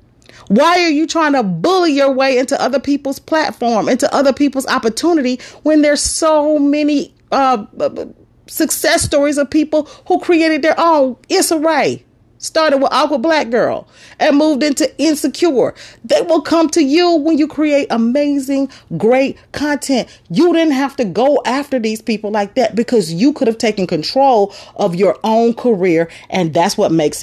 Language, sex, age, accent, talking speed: English, female, 40-59, American, 165 wpm